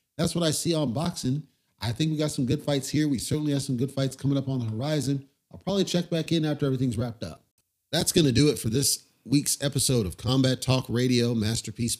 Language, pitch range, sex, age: English, 110-135 Hz, male, 40-59